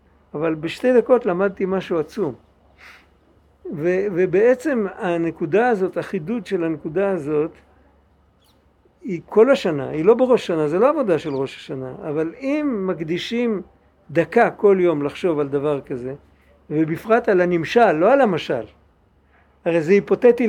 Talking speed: 135 wpm